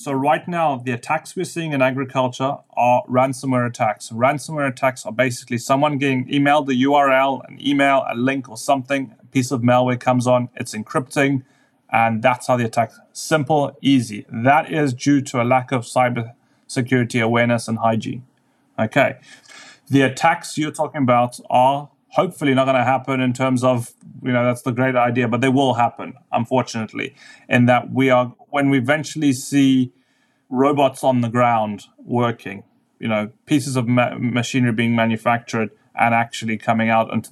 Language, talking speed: English, 170 wpm